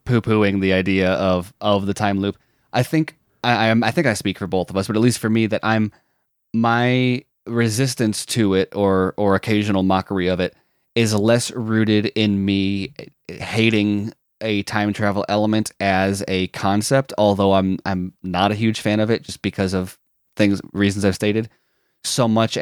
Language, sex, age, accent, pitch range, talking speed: English, male, 20-39, American, 95-110 Hz, 180 wpm